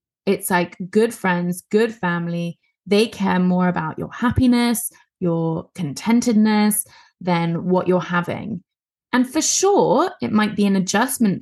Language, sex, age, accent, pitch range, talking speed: English, female, 20-39, British, 180-230 Hz, 135 wpm